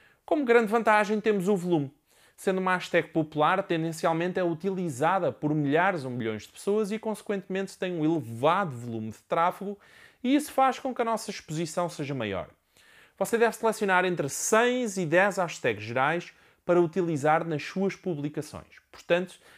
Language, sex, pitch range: Portuguese, male, 150-200 Hz